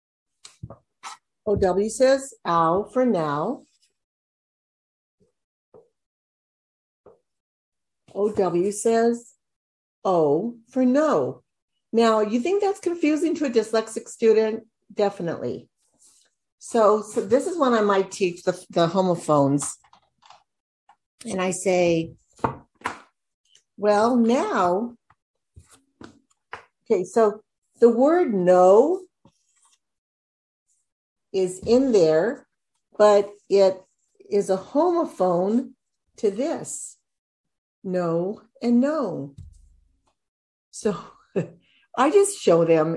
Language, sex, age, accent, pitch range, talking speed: English, female, 60-79, American, 180-245 Hz, 80 wpm